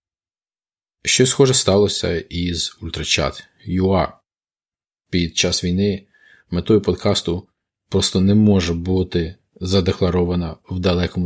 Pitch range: 85-100 Hz